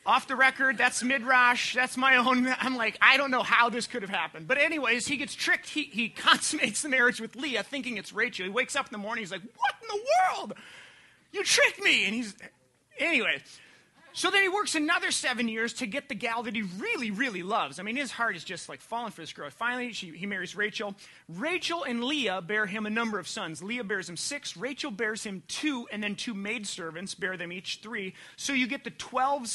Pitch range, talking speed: 180-260 Hz, 225 wpm